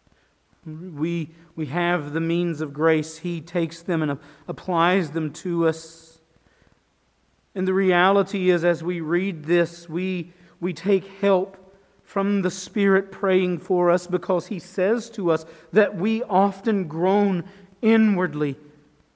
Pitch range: 175-205 Hz